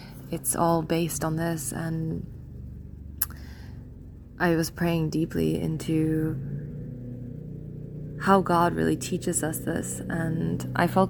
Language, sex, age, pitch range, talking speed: English, female, 20-39, 145-165 Hz, 110 wpm